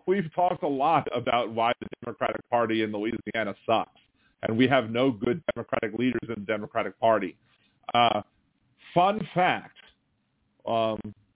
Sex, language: male, English